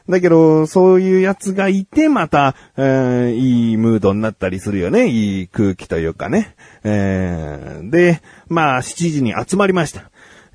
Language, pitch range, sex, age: Japanese, 115-180 Hz, male, 40-59